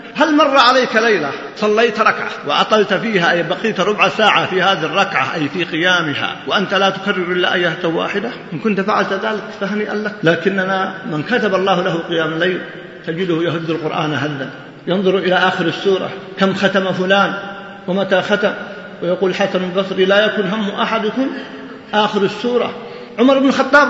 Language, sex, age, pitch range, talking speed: Arabic, male, 50-69, 185-245 Hz, 155 wpm